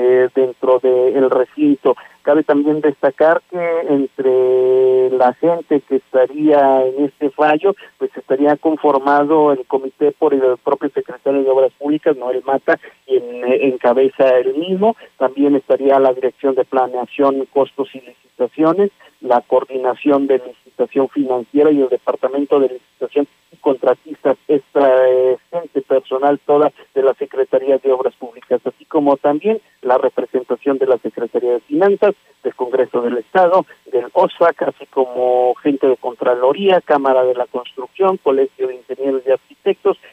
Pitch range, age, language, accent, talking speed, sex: 130-170 Hz, 40-59, Spanish, Mexican, 140 wpm, male